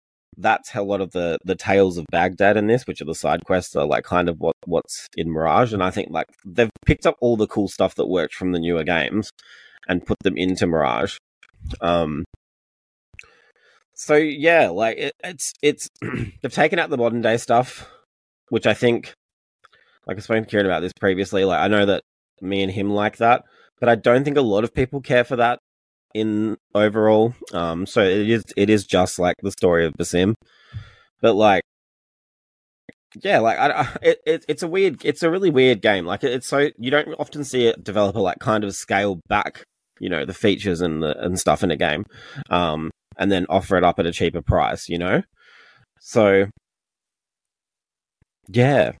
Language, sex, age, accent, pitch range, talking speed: English, male, 20-39, Australian, 90-120 Hz, 195 wpm